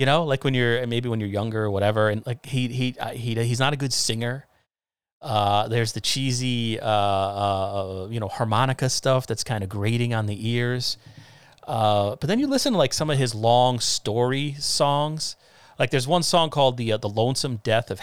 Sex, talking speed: male, 205 wpm